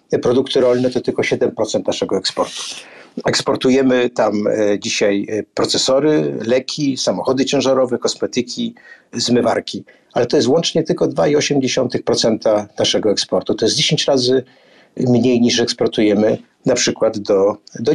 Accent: native